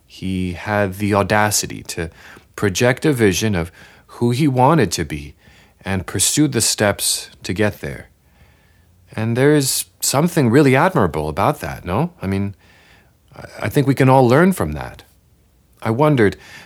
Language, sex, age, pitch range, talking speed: English, male, 40-59, 90-125 Hz, 150 wpm